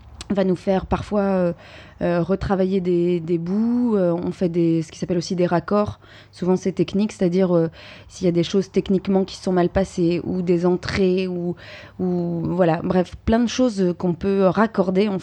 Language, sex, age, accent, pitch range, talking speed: French, female, 20-39, French, 170-195 Hz, 195 wpm